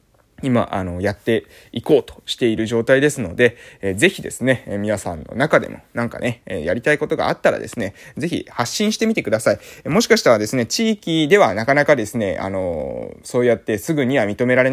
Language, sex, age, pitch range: Japanese, male, 20-39, 115-170 Hz